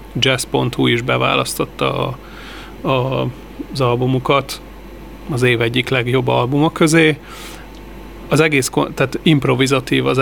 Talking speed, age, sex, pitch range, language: 105 wpm, 30-49, male, 125-145 Hz, Hungarian